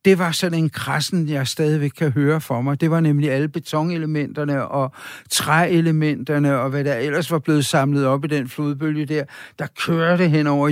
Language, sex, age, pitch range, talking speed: Danish, male, 60-79, 130-155 Hz, 190 wpm